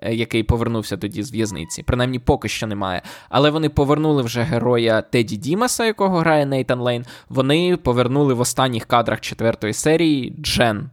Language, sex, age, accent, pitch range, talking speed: Ukrainian, male, 20-39, native, 120-150 Hz, 155 wpm